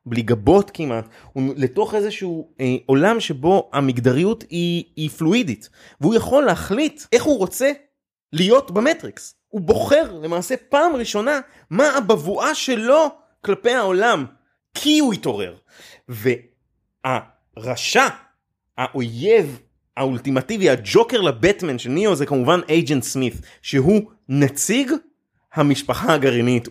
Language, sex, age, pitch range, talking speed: Hebrew, male, 30-49, 130-215 Hz, 110 wpm